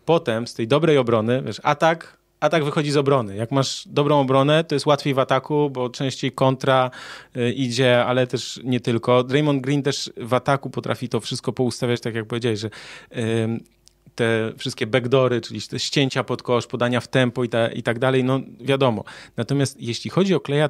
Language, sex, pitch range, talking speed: Polish, male, 115-135 Hz, 190 wpm